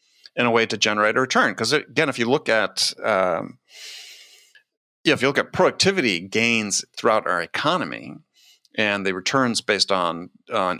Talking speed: 165 wpm